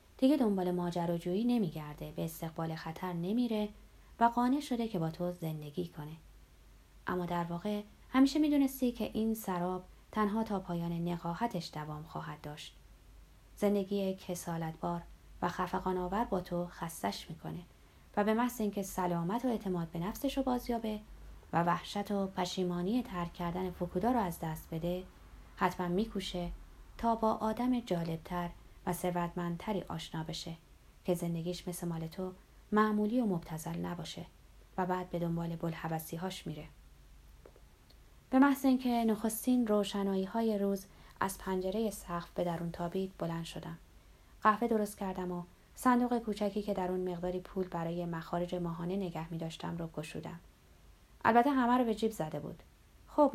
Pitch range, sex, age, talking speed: 170-215 Hz, female, 20-39, 140 wpm